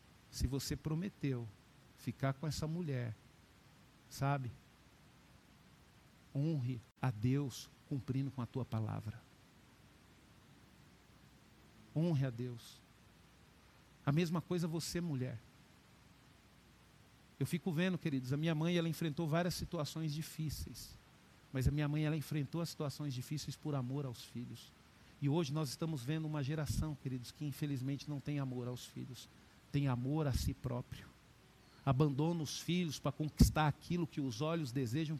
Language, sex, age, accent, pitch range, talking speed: Portuguese, male, 50-69, Brazilian, 130-170 Hz, 135 wpm